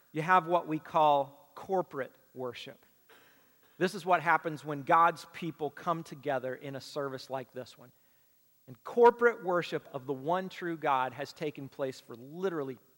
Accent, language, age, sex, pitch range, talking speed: American, English, 40-59, male, 135-180 Hz, 160 wpm